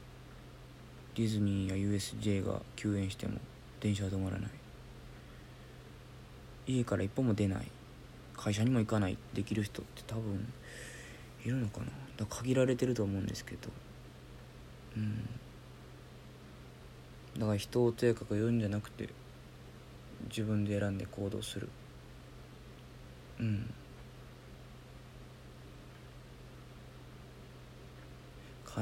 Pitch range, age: 105-120 Hz, 40-59